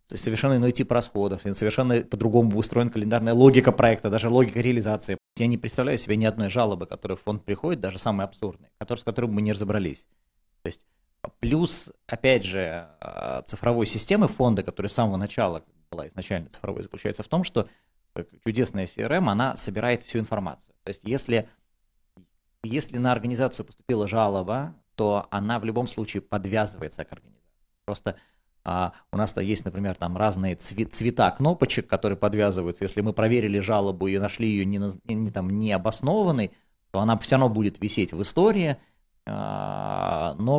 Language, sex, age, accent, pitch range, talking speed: Russian, male, 20-39, native, 100-120 Hz, 160 wpm